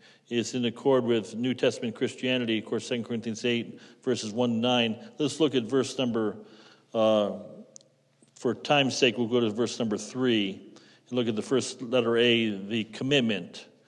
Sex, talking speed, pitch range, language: male, 175 wpm, 115-130 Hz, English